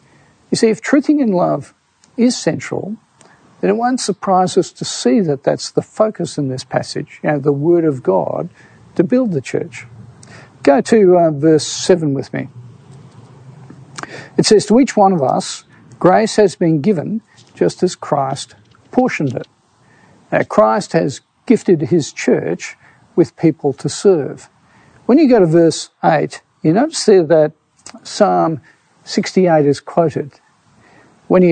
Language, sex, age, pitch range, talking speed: English, male, 50-69, 145-195 Hz, 155 wpm